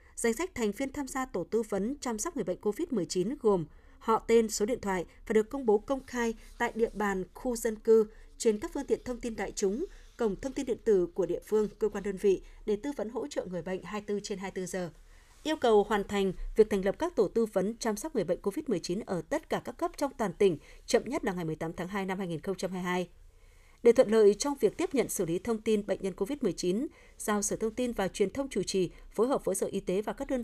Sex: female